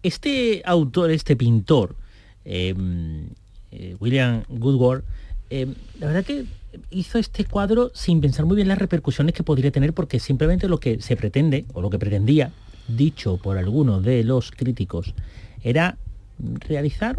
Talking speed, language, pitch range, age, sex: 145 wpm, Spanish, 100-160 Hz, 40-59, male